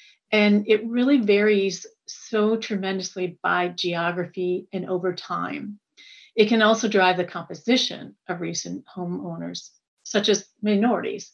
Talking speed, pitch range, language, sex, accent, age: 120 wpm, 180-225 Hz, English, female, American, 40-59